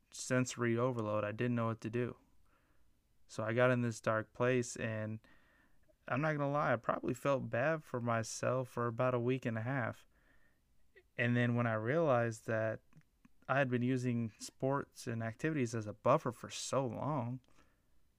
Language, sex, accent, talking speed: English, male, American, 170 wpm